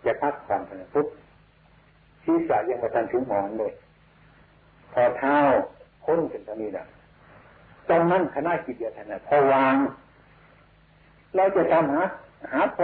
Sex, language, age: male, Thai, 60-79